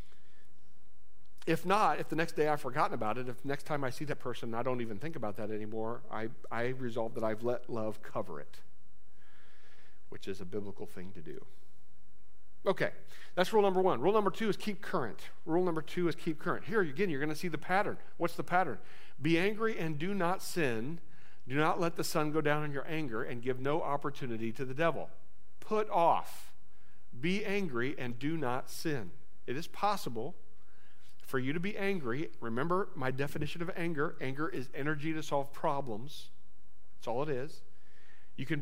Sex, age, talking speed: male, 50-69, 195 wpm